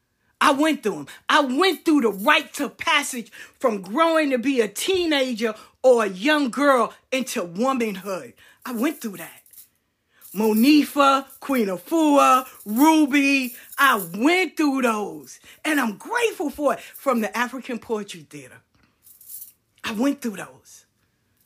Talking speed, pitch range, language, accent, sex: 140 wpm, 215-285 Hz, English, American, female